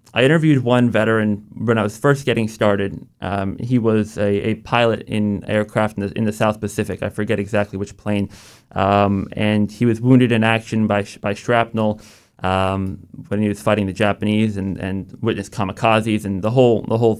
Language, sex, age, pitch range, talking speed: English, male, 20-39, 100-110 Hz, 195 wpm